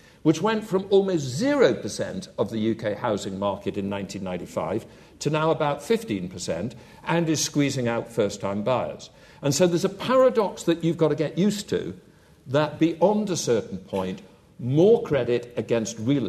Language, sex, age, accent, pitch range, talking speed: English, male, 60-79, British, 120-175 Hz, 160 wpm